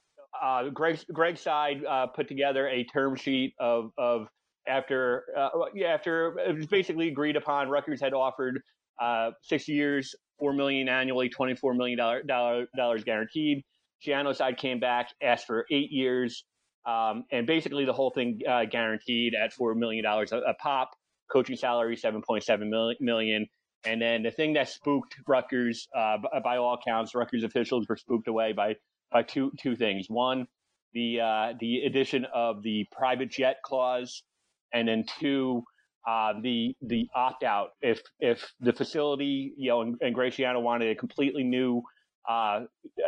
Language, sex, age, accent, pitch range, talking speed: English, male, 30-49, American, 115-135 Hz, 165 wpm